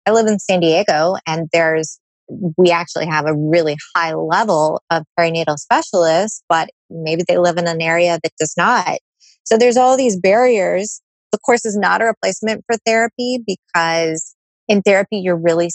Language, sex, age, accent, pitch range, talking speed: English, female, 20-39, American, 160-205 Hz, 170 wpm